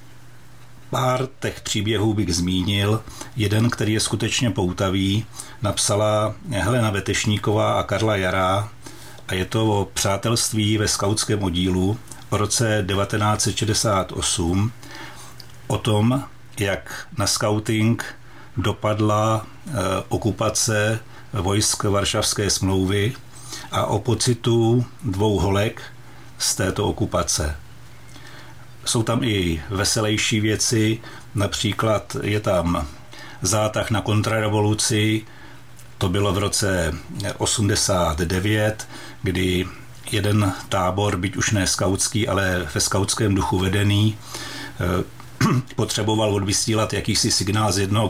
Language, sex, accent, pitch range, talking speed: Czech, male, native, 100-115 Hz, 100 wpm